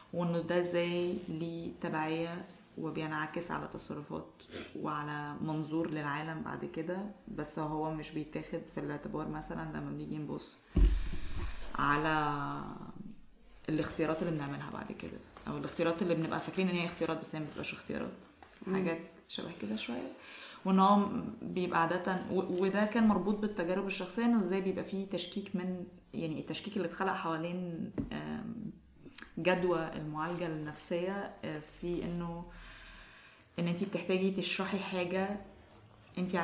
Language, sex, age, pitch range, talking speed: Arabic, female, 20-39, 155-185 Hz, 120 wpm